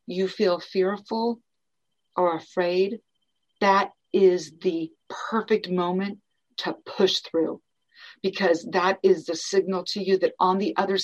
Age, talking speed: 50-69, 130 wpm